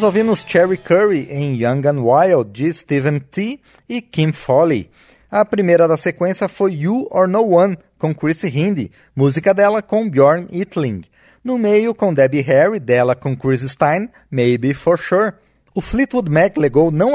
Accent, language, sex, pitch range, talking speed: Brazilian, Portuguese, male, 145-205 Hz, 170 wpm